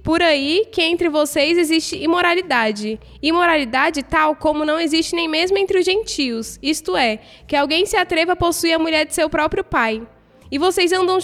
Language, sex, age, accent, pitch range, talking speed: Portuguese, female, 10-29, Brazilian, 280-365 Hz, 180 wpm